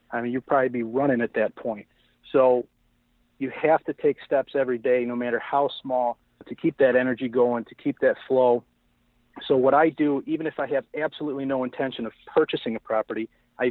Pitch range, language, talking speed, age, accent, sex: 120-140 Hz, English, 200 wpm, 40-59, American, male